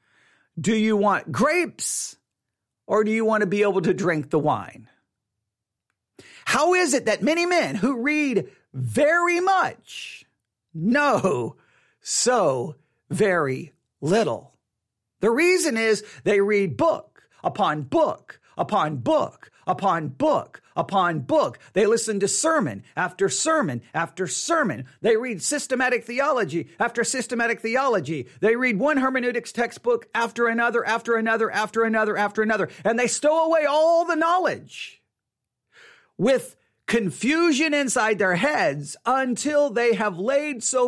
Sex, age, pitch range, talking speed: male, 50-69, 200-285 Hz, 130 wpm